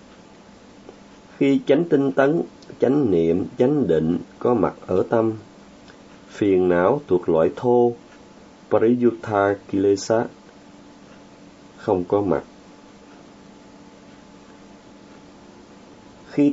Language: Vietnamese